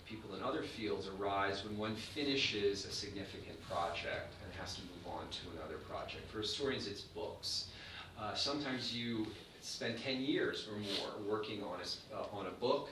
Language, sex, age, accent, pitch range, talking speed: English, male, 40-59, American, 100-120 Hz, 165 wpm